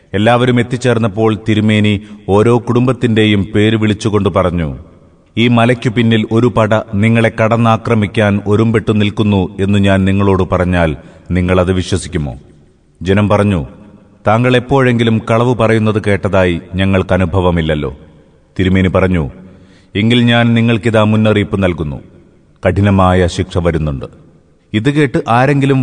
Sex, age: male, 30-49